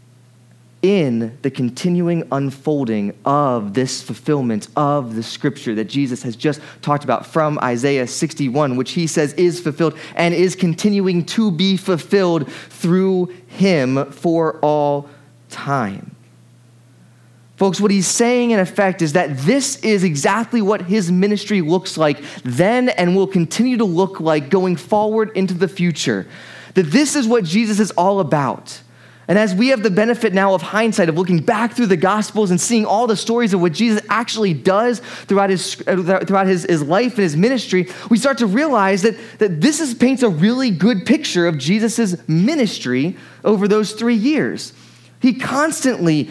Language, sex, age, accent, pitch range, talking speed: English, male, 20-39, American, 150-220 Hz, 165 wpm